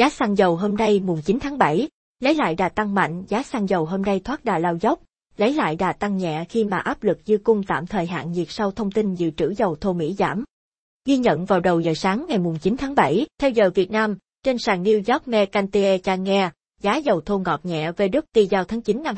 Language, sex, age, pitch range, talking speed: Vietnamese, female, 20-39, 185-225 Hz, 245 wpm